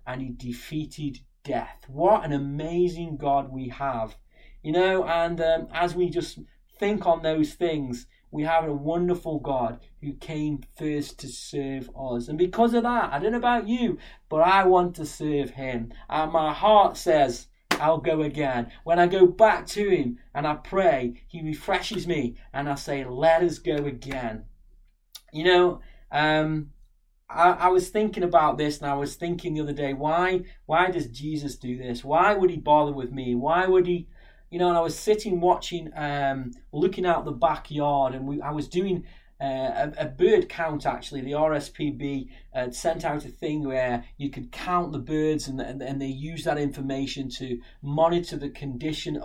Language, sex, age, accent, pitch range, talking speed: English, male, 20-39, British, 135-175 Hz, 180 wpm